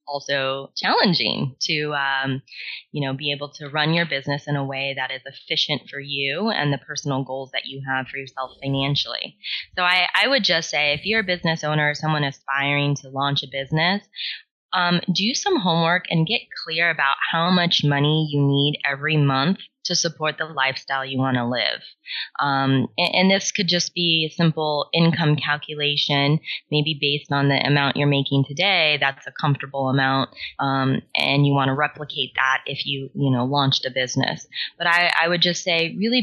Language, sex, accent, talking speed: English, female, American, 190 wpm